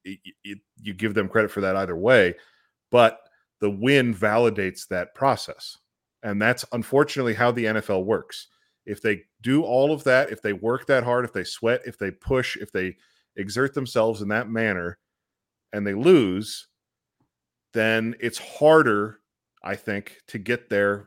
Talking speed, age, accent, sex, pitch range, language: 160 wpm, 40-59, American, male, 105-125 Hz, English